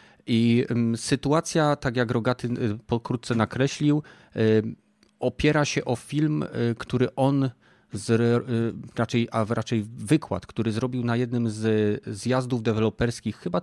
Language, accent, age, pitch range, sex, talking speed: Polish, native, 30-49, 110-125 Hz, male, 140 wpm